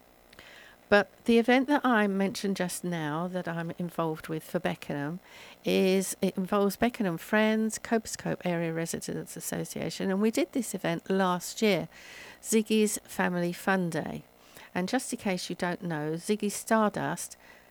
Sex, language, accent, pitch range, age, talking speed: female, English, British, 170-210 Hz, 50-69, 145 wpm